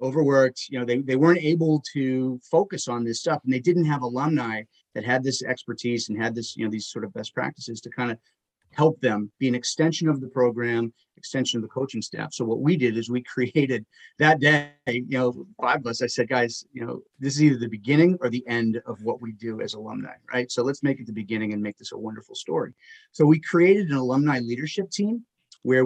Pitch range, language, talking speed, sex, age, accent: 120-150 Hz, English, 230 wpm, male, 30-49, American